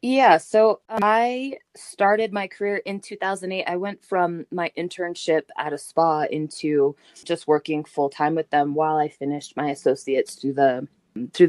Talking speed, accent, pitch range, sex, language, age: 165 wpm, American, 155-205 Hz, female, English, 20-39